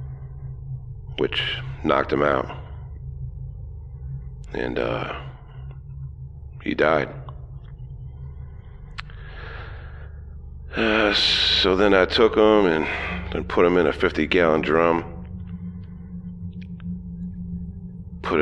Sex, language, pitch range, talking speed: male, English, 70-90 Hz, 75 wpm